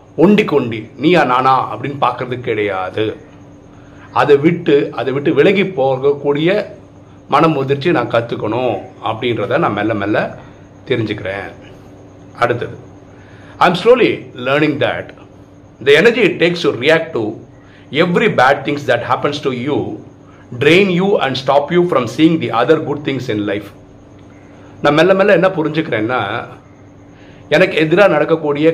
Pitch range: 105-160 Hz